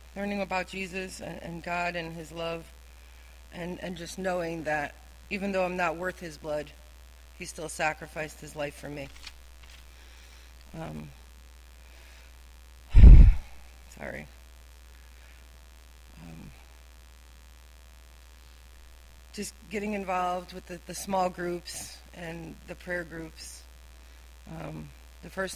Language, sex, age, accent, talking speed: English, female, 40-59, American, 105 wpm